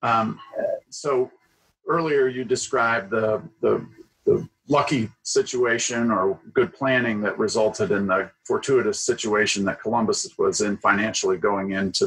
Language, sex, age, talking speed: English, male, 40-59, 130 wpm